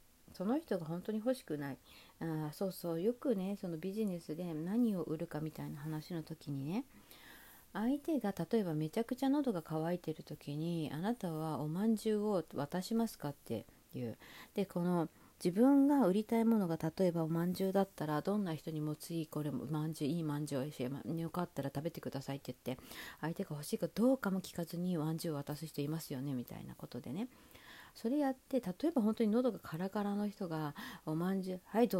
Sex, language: female, Japanese